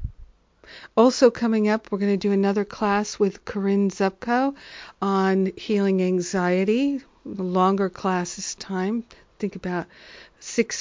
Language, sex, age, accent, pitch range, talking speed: English, female, 50-69, American, 185-215 Hz, 130 wpm